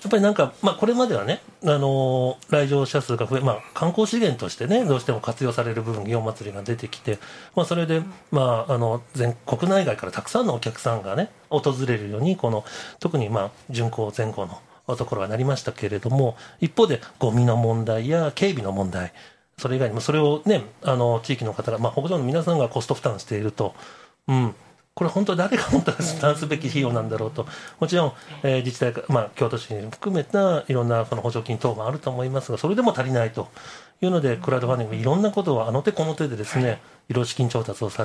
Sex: male